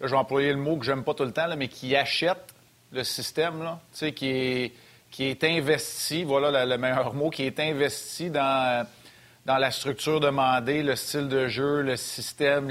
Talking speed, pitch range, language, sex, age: 210 wpm, 125-145 Hz, French, male, 30-49